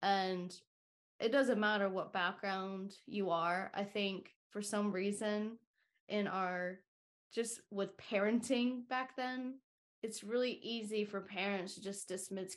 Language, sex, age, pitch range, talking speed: English, female, 20-39, 180-215 Hz, 135 wpm